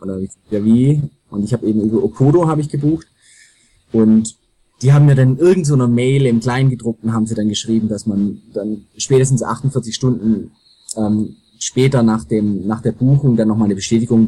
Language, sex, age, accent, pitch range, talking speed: German, male, 20-39, German, 100-125 Hz, 180 wpm